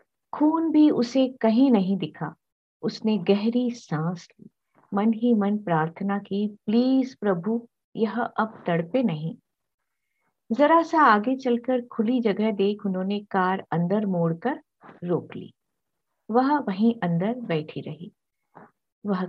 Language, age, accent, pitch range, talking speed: Hindi, 50-69, native, 195-255 Hz, 125 wpm